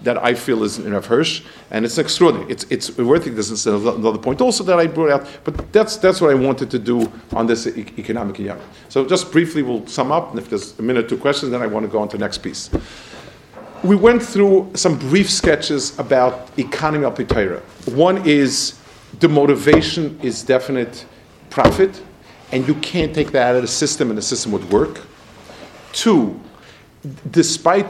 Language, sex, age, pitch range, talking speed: English, male, 50-69, 115-160 Hz, 200 wpm